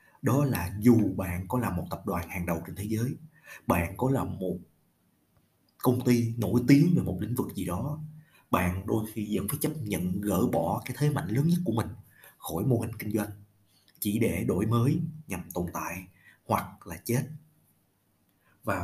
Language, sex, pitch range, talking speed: Vietnamese, male, 95-125 Hz, 190 wpm